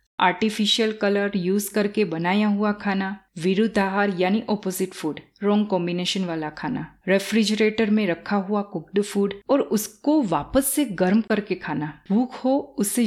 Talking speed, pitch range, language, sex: 145 wpm, 180-220 Hz, Hindi, female